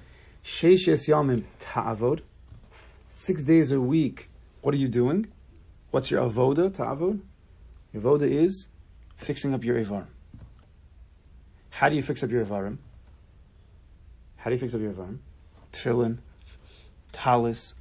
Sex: male